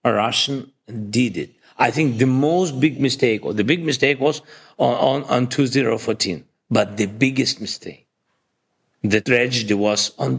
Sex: male